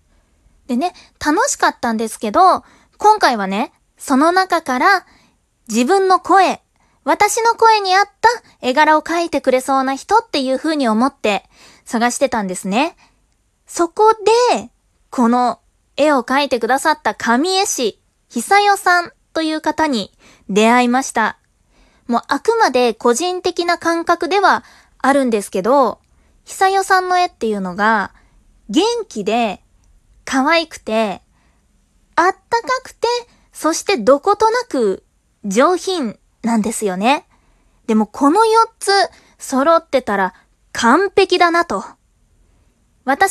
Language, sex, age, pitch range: Japanese, female, 20-39, 235-365 Hz